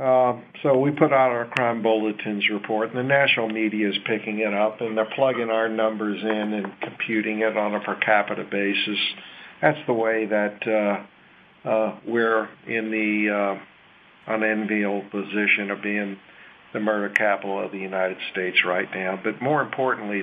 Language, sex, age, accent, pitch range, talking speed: English, male, 50-69, American, 105-120 Hz, 170 wpm